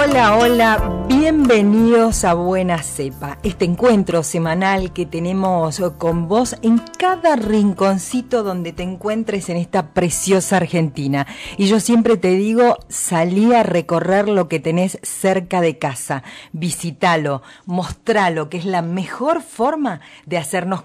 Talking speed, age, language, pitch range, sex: 130 wpm, 40-59, Spanish, 160-220 Hz, female